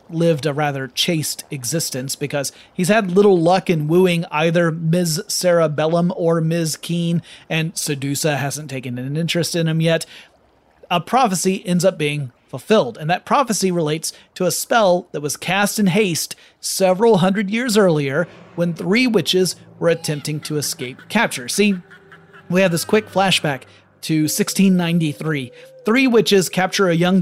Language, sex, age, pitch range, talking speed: English, male, 30-49, 150-190 Hz, 160 wpm